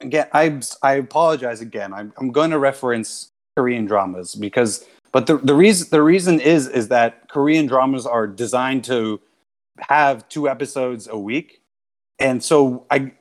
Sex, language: male, English